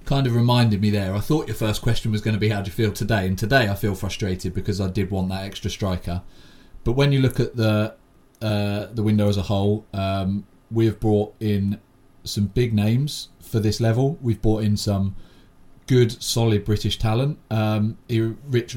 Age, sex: 30-49, male